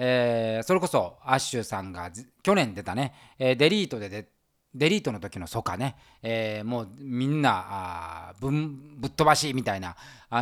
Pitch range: 115-185 Hz